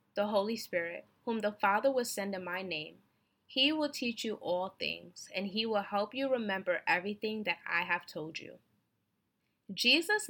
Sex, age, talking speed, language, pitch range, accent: female, 20-39, 175 wpm, English, 180-230 Hz, American